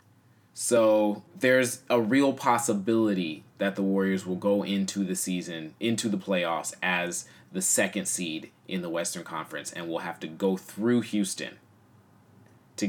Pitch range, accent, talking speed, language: 95-115 Hz, American, 150 wpm, English